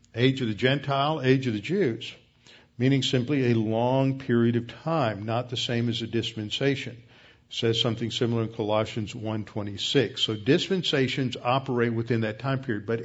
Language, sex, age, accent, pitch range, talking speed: English, male, 50-69, American, 115-135 Hz, 165 wpm